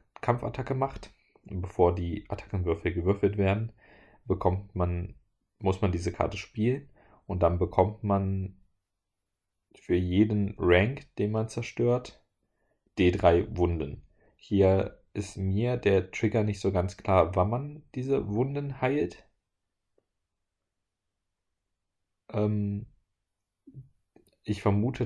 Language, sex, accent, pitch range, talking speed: German, male, German, 90-110 Hz, 105 wpm